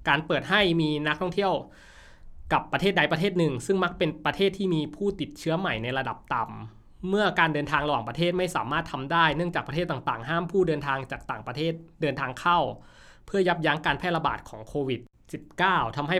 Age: 20-39